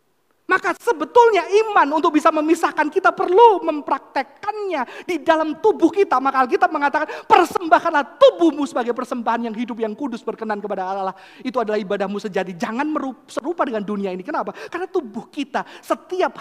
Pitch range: 205-320 Hz